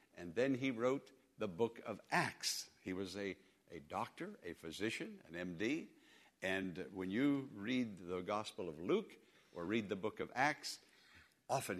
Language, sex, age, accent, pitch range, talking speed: English, male, 60-79, American, 105-155 Hz, 165 wpm